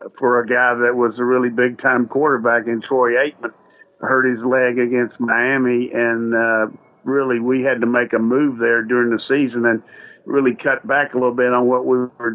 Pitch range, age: 120-130 Hz, 50-69